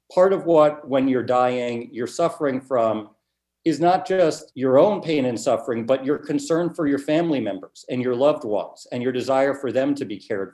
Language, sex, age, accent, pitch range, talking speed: English, male, 50-69, American, 115-150 Hz, 205 wpm